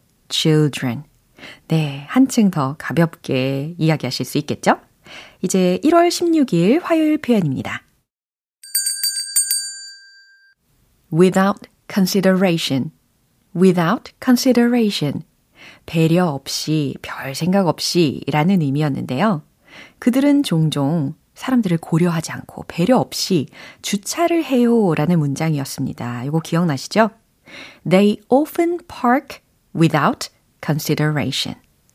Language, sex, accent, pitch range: Korean, female, native, 155-245 Hz